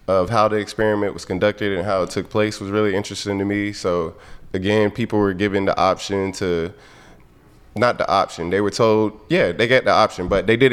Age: 20-39